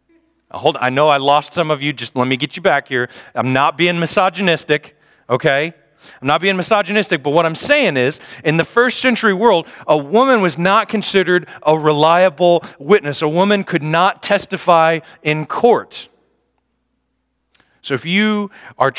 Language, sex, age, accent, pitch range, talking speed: English, male, 40-59, American, 100-160 Hz, 170 wpm